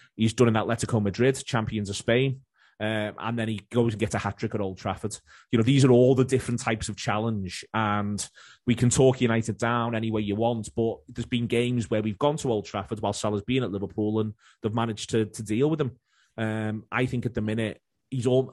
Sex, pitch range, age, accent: male, 105-120 Hz, 30-49, British